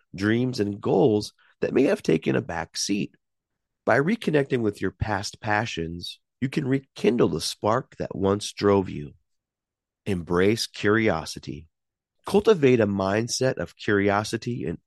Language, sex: English, male